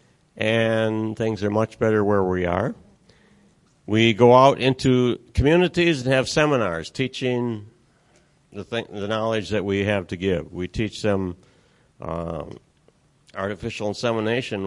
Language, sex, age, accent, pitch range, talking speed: English, male, 60-79, American, 100-130 Hz, 125 wpm